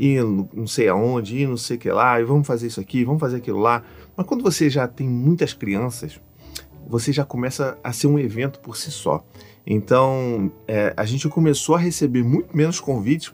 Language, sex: Portuguese, male